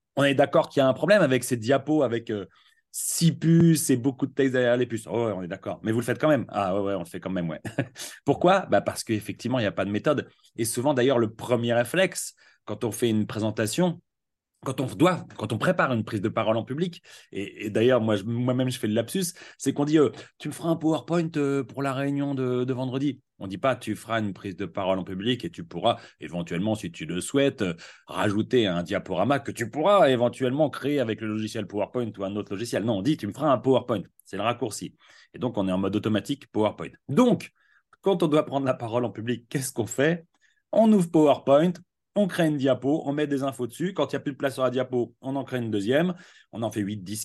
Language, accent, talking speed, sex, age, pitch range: French, French, 260 wpm, male, 30-49, 110-145 Hz